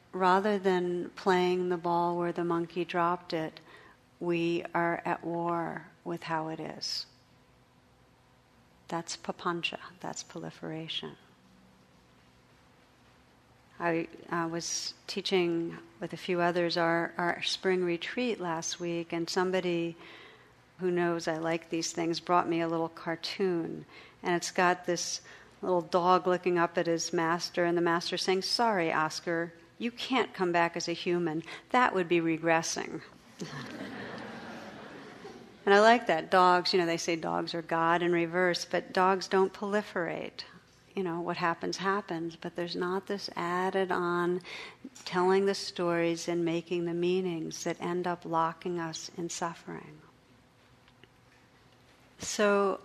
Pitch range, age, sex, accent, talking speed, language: 165-185 Hz, 50-69, female, American, 135 wpm, English